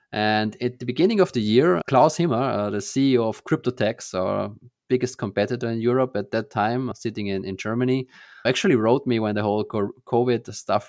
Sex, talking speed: male, 185 wpm